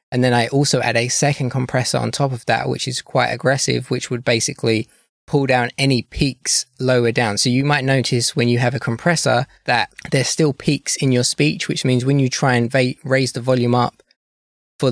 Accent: British